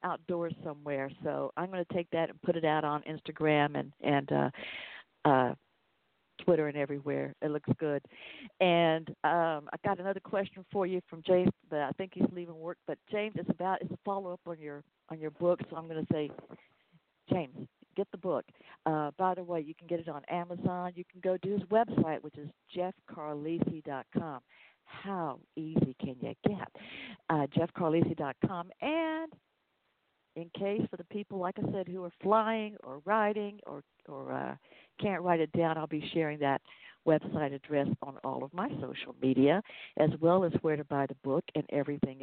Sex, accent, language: female, American, English